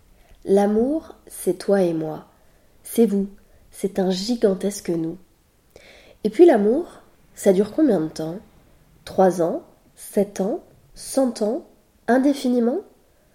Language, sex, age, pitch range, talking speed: French, female, 20-39, 185-250 Hz, 115 wpm